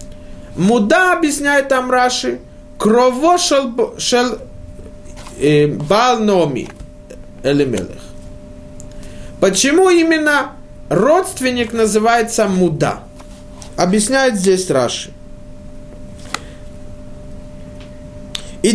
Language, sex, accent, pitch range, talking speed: Russian, male, native, 165-260 Hz, 55 wpm